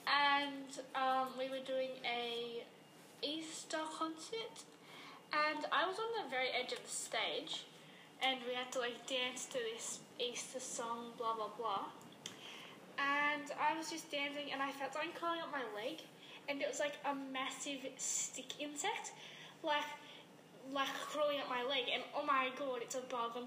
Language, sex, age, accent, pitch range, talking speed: English, female, 10-29, British, 260-310 Hz, 170 wpm